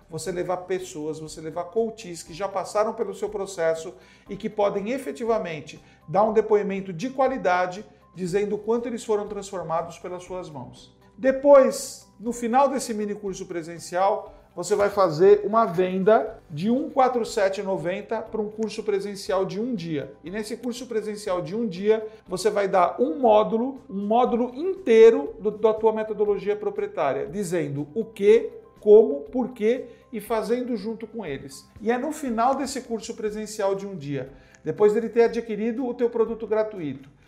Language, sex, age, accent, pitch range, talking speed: Portuguese, male, 50-69, Brazilian, 190-230 Hz, 160 wpm